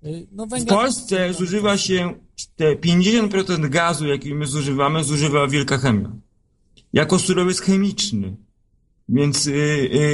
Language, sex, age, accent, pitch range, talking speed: Polish, male, 40-59, native, 130-160 Hz, 110 wpm